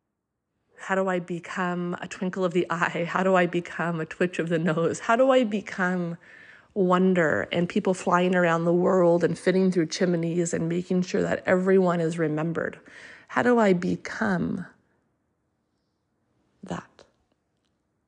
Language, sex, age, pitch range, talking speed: English, female, 30-49, 170-190 Hz, 150 wpm